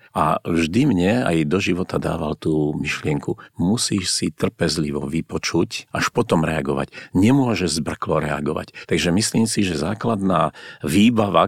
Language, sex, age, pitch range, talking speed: Slovak, male, 50-69, 75-95 Hz, 130 wpm